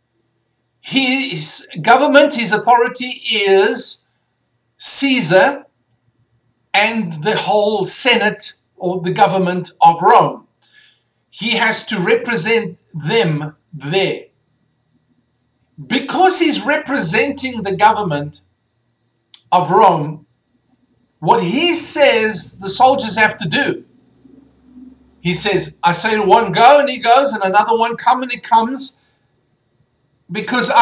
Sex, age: male, 50-69